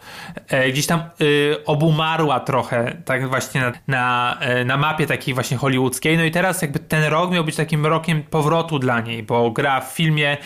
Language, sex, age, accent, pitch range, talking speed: Polish, male, 20-39, native, 130-155 Hz, 185 wpm